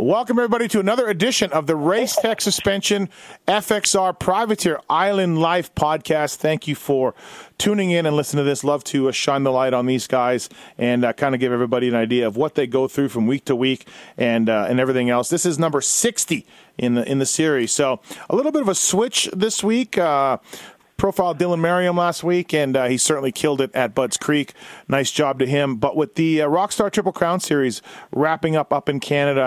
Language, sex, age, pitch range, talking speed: English, male, 40-59, 130-190 Hz, 205 wpm